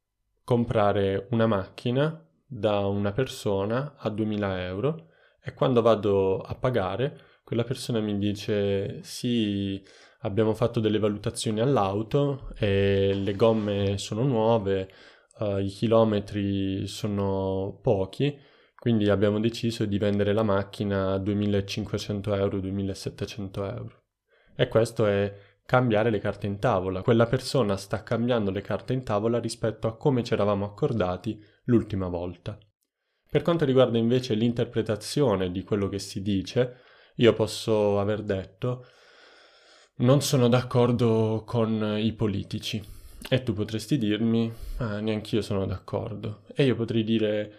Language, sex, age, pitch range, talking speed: Italian, male, 20-39, 100-120 Hz, 130 wpm